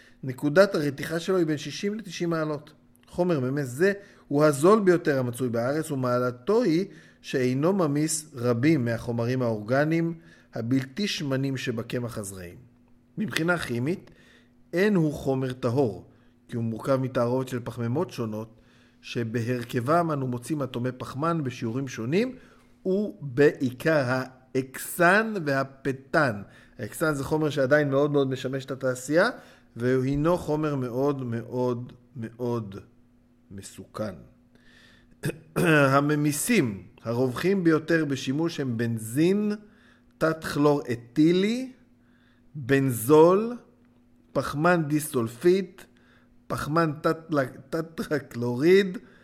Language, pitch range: Hebrew, 120-160 Hz